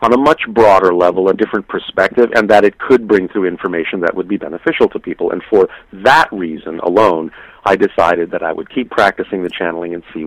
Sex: male